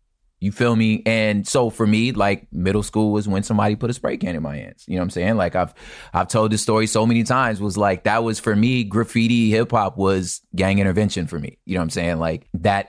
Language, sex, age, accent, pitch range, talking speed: English, male, 20-39, American, 95-125 Hz, 255 wpm